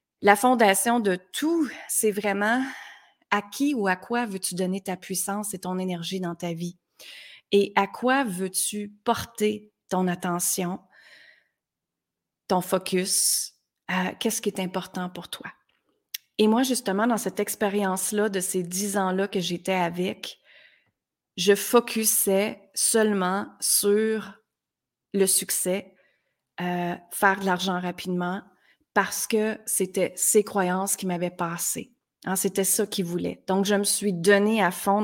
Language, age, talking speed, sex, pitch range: French, 30-49, 135 wpm, female, 185-215 Hz